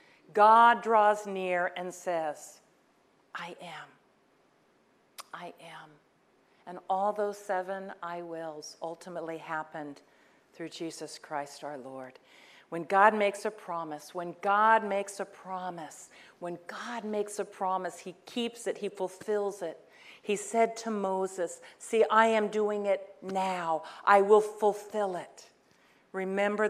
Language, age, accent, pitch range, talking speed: English, 50-69, American, 170-220 Hz, 130 wpm